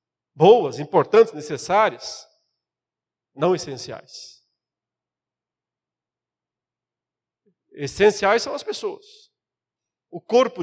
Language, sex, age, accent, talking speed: Portuguese, male, 50-69, Brazilian, 60 wpm